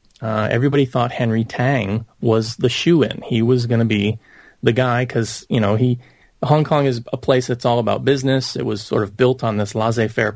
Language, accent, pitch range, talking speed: English, American, 110-130 Hz, 220 wpm